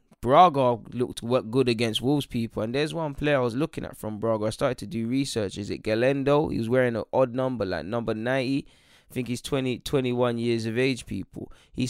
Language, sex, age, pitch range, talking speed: English, male, 10-29, 110-135 Hz, 215 wpm